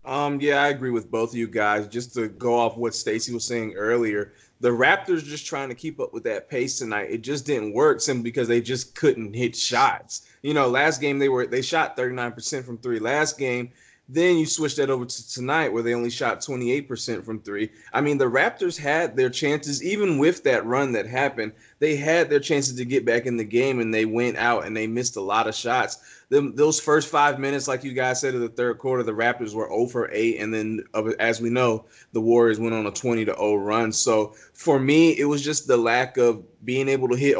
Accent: American